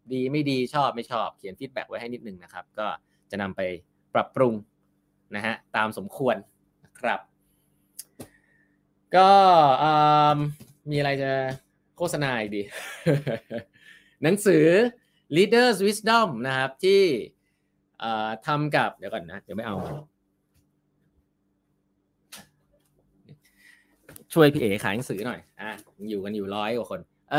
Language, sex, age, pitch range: Thai, male, 20-39, 115-155 Hz